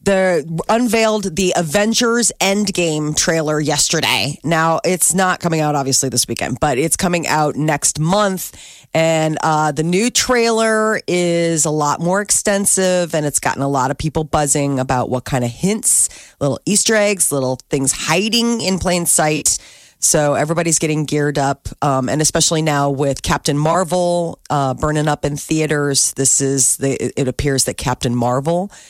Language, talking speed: English, 160 wpm